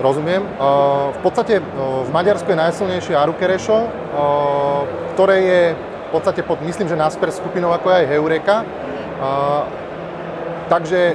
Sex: male